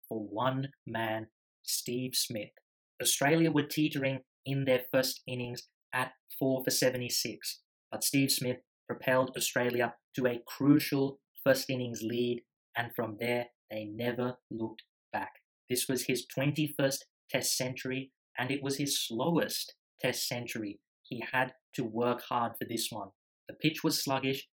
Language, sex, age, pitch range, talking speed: English, male, 20-39, 120-135 Hz, 145 wpm